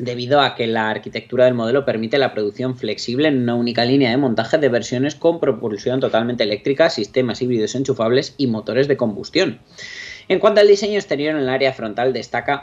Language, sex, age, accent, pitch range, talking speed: Spanish, male, 20-39, Spanish, 115-145 Hz, 190 wpm